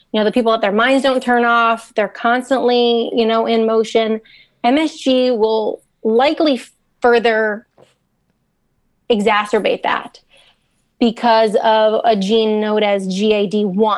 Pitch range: 215-240 Hz